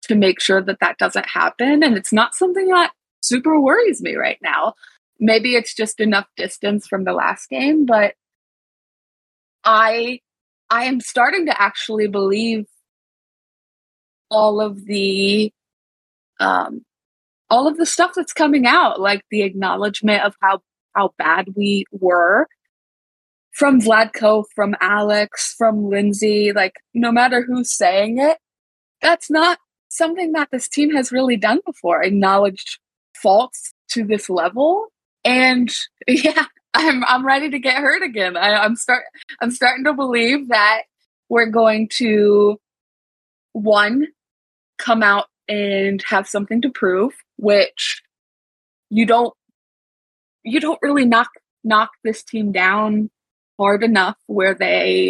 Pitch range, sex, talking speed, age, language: 205-285 Hz, female, 135 wpm, 20-39, English